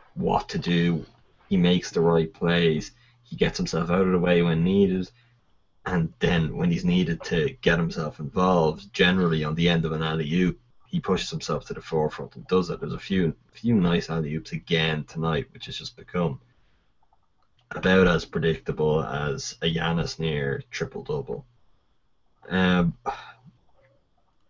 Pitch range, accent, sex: 80-95 Hz, Irish, male